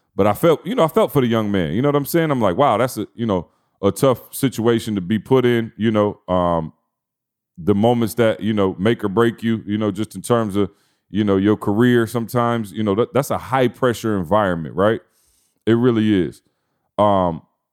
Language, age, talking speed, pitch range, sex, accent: English, 30-49, 215 wpm, 100-125 Hz, male, American